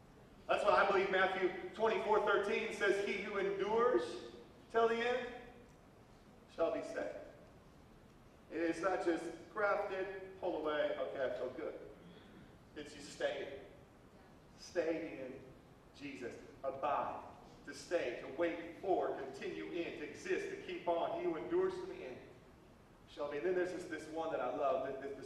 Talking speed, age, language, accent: 155 wpm, 40-59, English, American